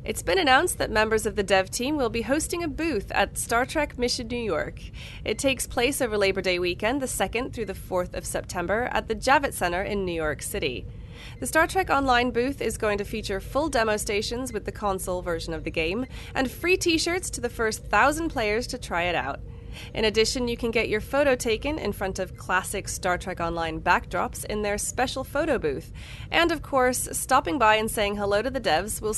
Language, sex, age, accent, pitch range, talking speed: English, female, 30-49, American, 190-260 Hz, 220 wpm